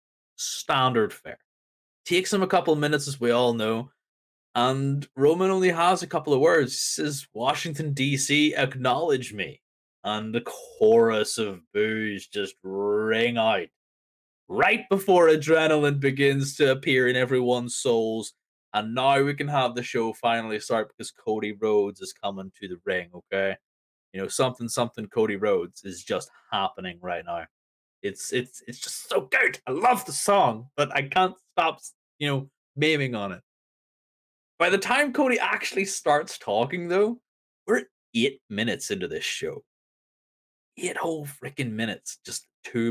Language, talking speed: English, 150 wpm